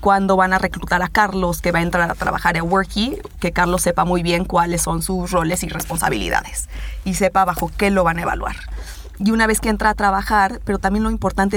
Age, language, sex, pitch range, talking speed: 20-39, Spanish, female, 175-200 Hz, 230 wpm